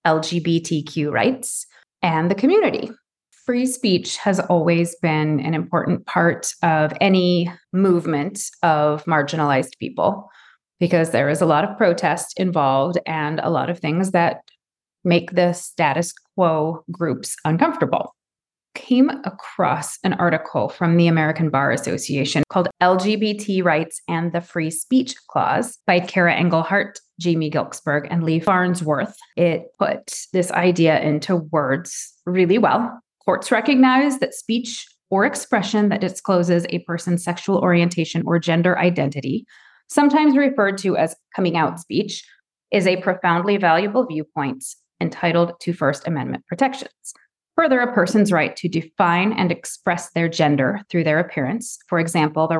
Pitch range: 160-195 Hz